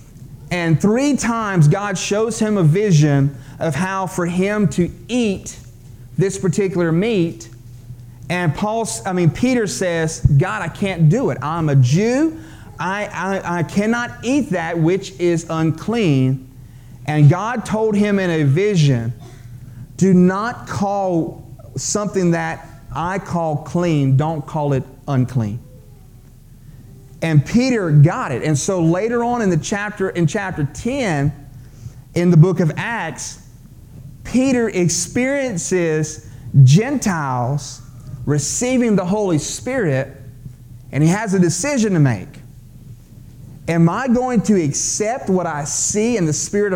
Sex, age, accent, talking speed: male, 30-49, American, 130 wpm